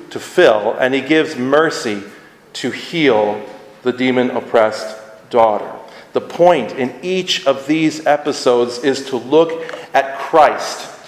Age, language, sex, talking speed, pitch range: 40-59, English, male, 130 wpm, 125-170 Hz